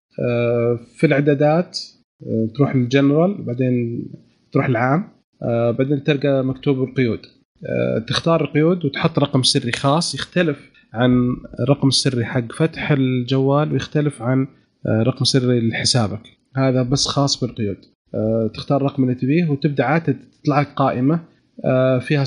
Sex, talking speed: male, 115 wpm